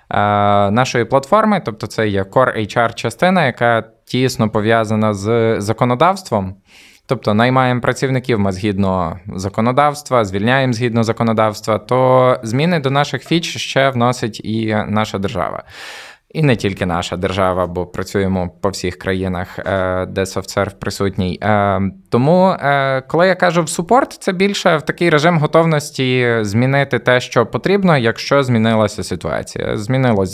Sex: male